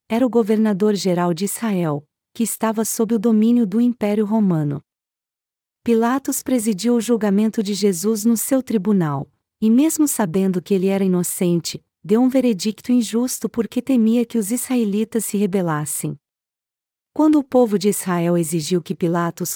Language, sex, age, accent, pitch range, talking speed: Portuguese, female, 40-59, Brazilian, 190-235 Hz, 145 wpm